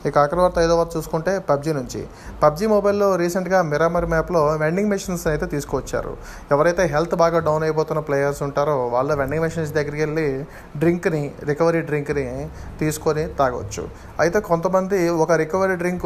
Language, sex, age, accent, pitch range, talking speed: Telugu, male, 30-49, native, 140-165 Hz, 145 wpm